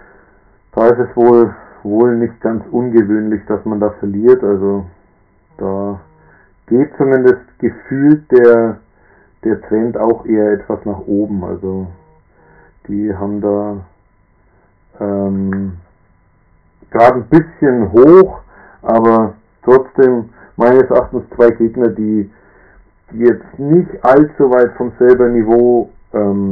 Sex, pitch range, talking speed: male, 100-125 Hz, 110 wpm